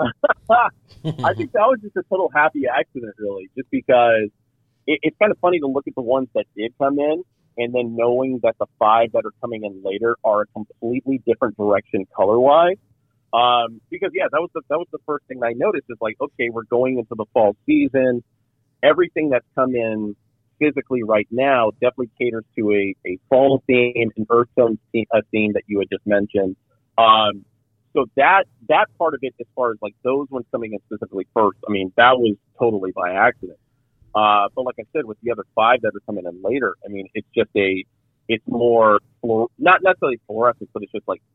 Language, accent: English, American